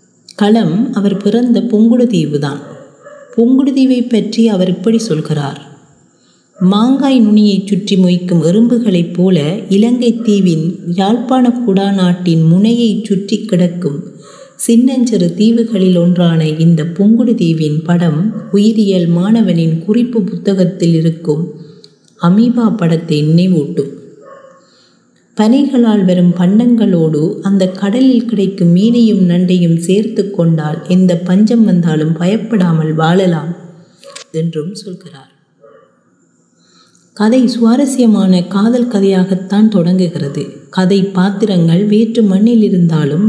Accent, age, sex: native, 30-49, female